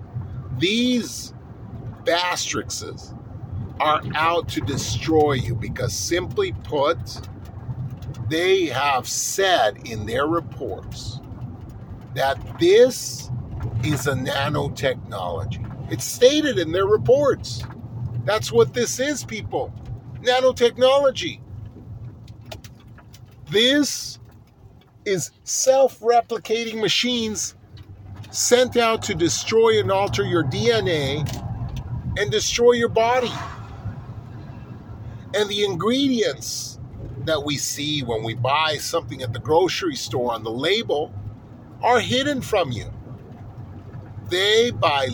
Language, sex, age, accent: English, male, 50-69, American